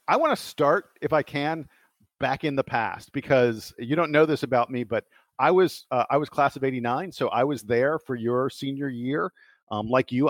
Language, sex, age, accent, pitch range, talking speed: English, male, 50-69, American, 120-145 Hz, 220 wpm